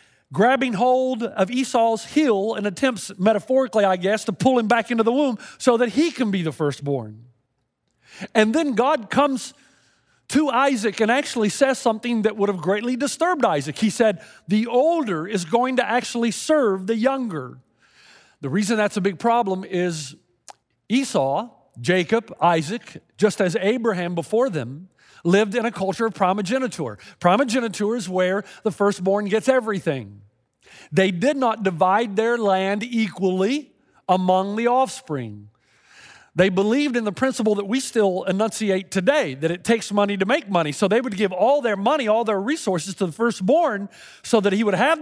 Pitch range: 185-245 Hz